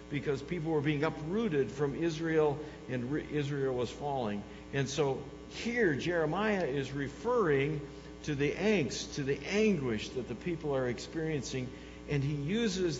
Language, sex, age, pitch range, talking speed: English, male, 60-79, 125-170 Hz, 145 wpm